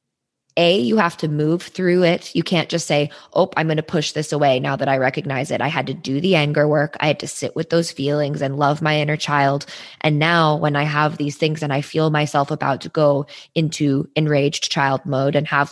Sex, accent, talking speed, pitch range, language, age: female, American, 235 wpm, 140-160 Hz, English, 20-39